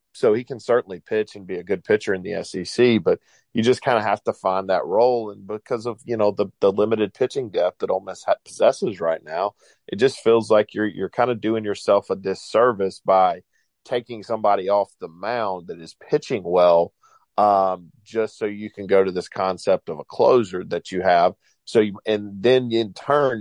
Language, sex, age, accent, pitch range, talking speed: English, male, 40-59, American, 100-120 Hz, 210 wpm